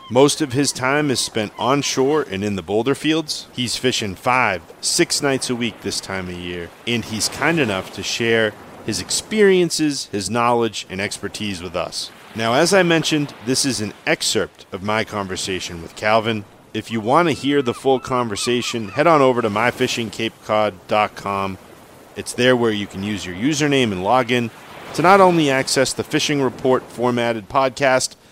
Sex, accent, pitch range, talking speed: male, American, 105-140 Hz, 175 wpm